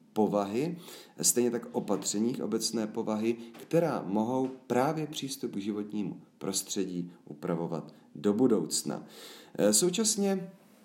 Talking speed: 95 wpm